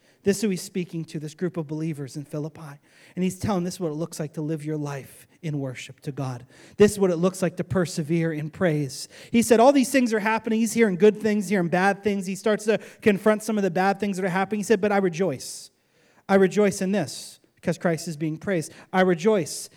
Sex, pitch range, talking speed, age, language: male, 155-215 Hz, 245 wpm, 30-49, English